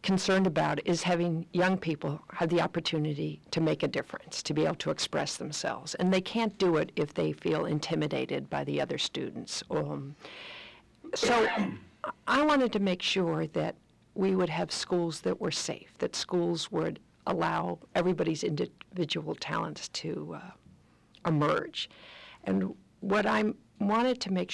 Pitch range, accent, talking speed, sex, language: 160-200 Hz, American, 155 wpm, female, English